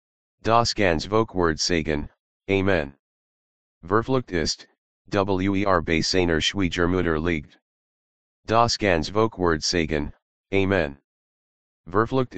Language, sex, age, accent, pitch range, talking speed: English, male, 30-49, American, 85-100 Hz, 85 wpm